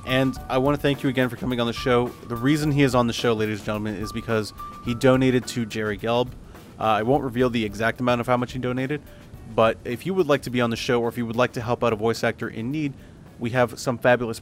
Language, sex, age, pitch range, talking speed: English, male, 30-49, 110-125 Hz, 285 wpm